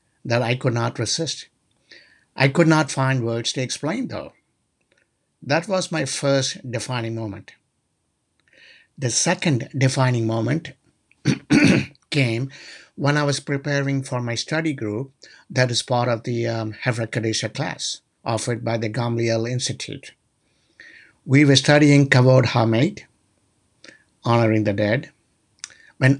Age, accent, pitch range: 60-79, Indian, 115-145 Hz